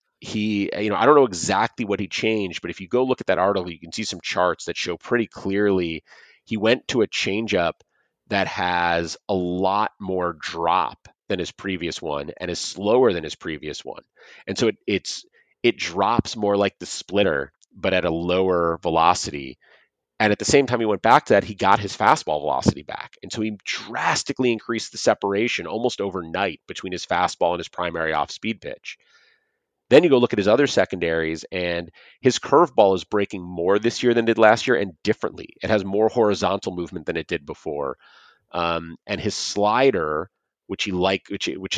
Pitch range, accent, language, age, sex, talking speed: 90-110 Hz, American, English, 30-49, male, 200 wpm